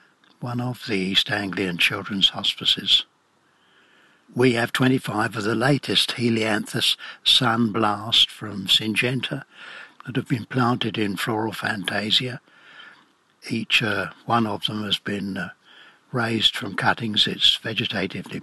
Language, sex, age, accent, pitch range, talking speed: English, male, 60-79, British, 105-130 Hz, 120 wpm